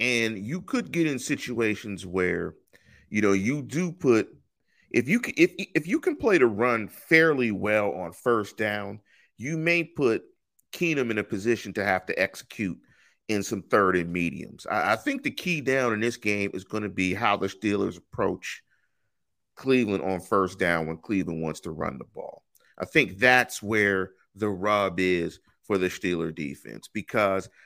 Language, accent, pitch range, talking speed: English, American, 100-145 Hz, 180 wpm